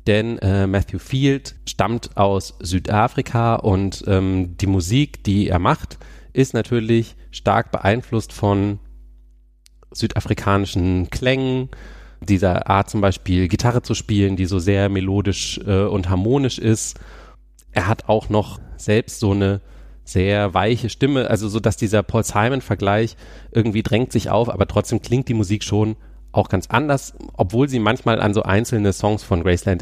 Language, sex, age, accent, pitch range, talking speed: German, male, 30-49, German, 95-115 Hz, 145 wpm